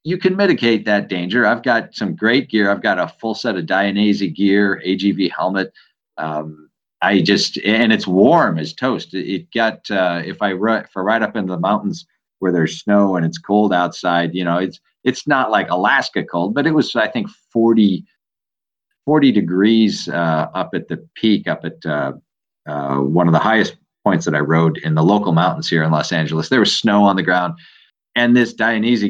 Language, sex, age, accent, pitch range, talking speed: English, male, 40-59, American, 85-115 Hz, 200 wpm